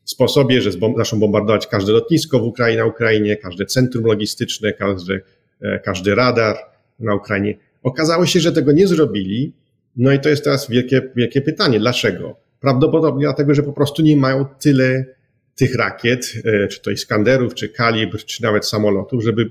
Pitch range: 105-135 Hz